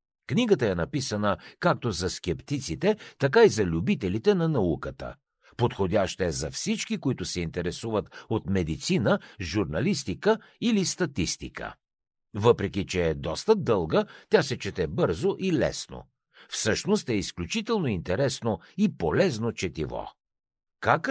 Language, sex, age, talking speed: Bulgarian, male, 60-79, 120 wpm